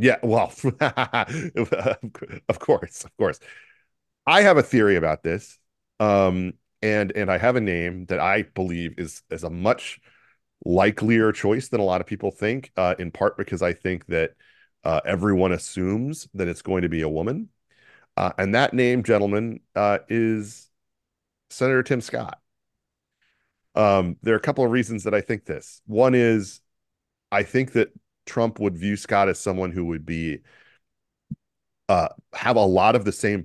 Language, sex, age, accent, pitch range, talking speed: English, male, 40-59, American, 90-115 Hz, 165 wpm